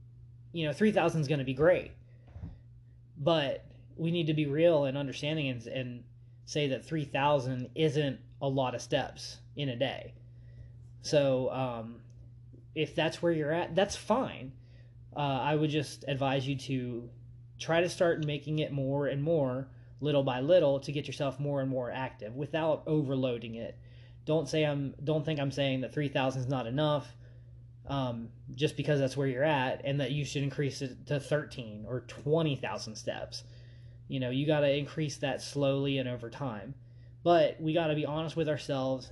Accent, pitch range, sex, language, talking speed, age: American, 120-150 Hz, male, English, 180 wpm, 20-39